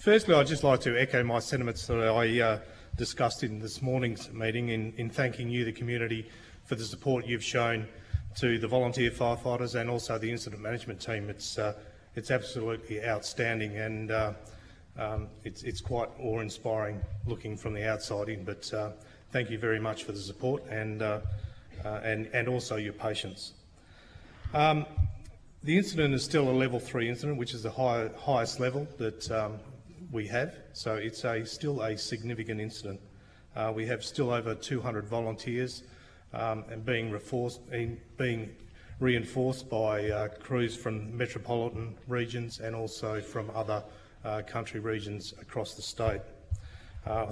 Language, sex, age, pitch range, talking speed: English, male, 30-49, 105-120 Hz, 160 wpm